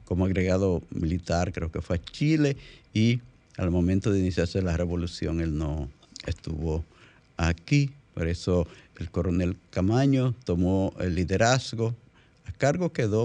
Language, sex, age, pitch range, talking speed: Spanish, male, 50-69, 85-115 Hz, 135 wpm